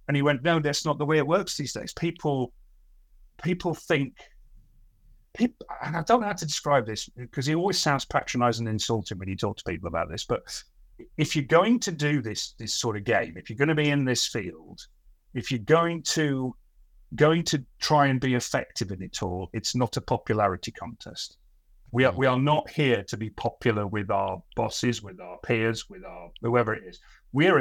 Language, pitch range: English, 105-140 Hz